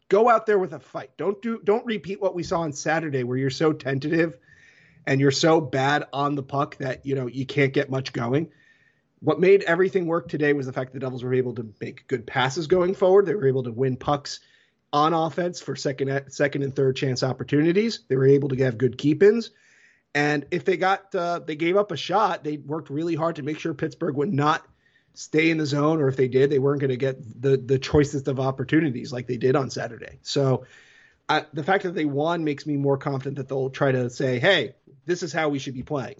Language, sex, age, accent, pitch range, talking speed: English, male, 30-49, American, 135-165 Hz, 235 wpm